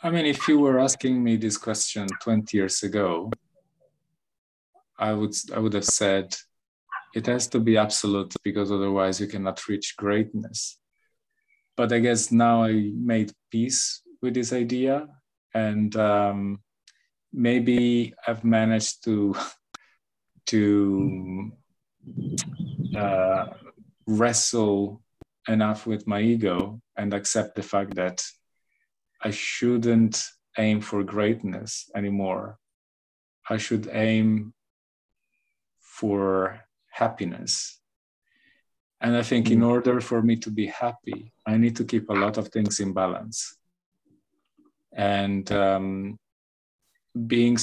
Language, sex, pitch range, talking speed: English, male, 100-120 Hz, 115 wpm